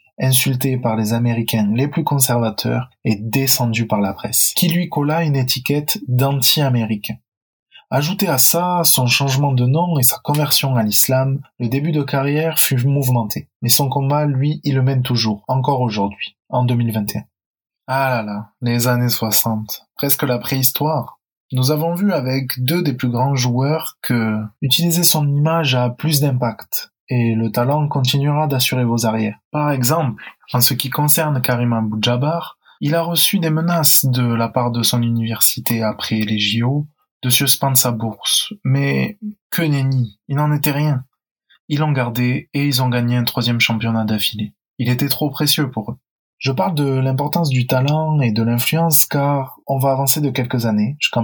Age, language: 20-39, French